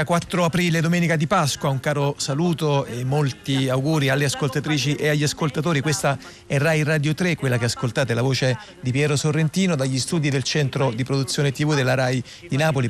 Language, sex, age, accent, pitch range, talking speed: Italian, male, 40-59, native, 120-140 Hz, 185 wpm